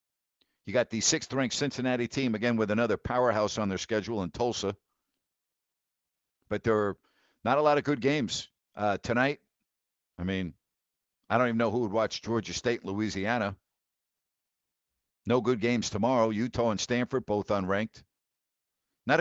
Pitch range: 105-130 Hz